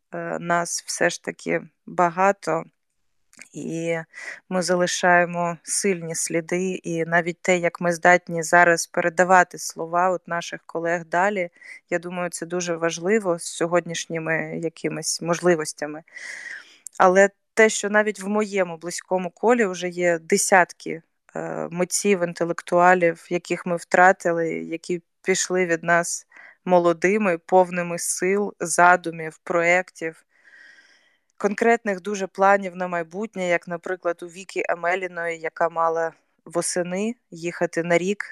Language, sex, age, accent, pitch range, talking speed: Ukrainian, female, 20-39, native, 165-185 Hz, 115 wpm